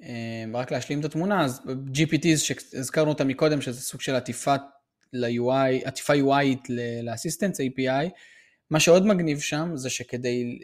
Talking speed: 135 wpm